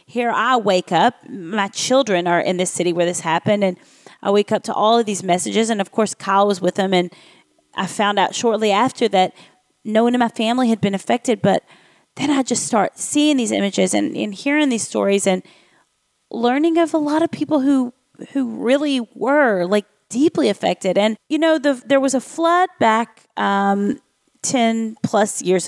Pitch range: 195-265 Hz